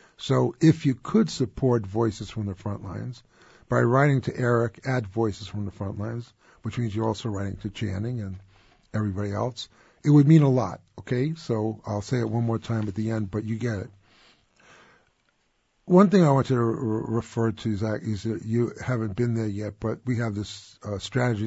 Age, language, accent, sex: 50-69, English, American, male